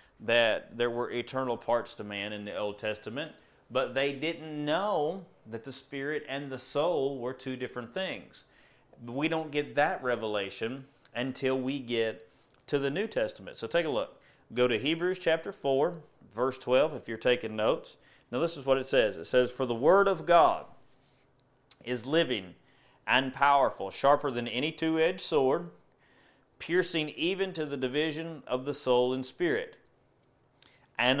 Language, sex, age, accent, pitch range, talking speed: English, male, 30-49, American, 125-155 Hz, 165 wpm